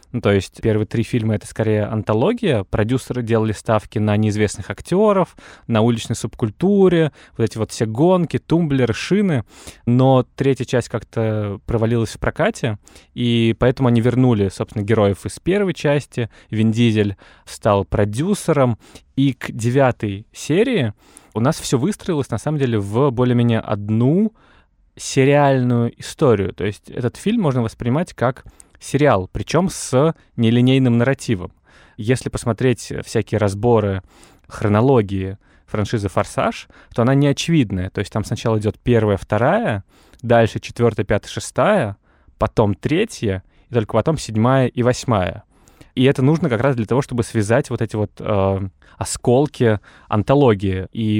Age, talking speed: 20-39, 140 wpm